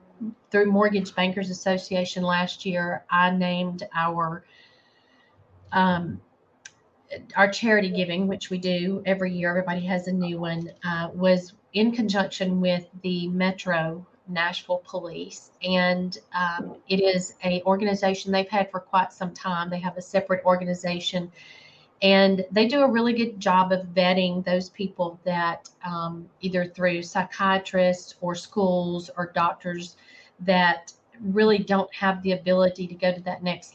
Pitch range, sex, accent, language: 180-195 Hz, female, American, English